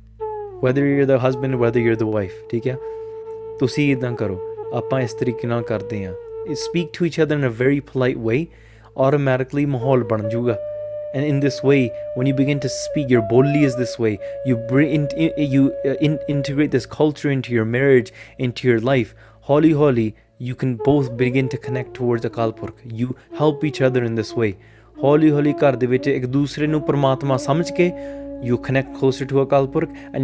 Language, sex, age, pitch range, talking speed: English, male, 20-39, 115-140 Hz, 155 wpm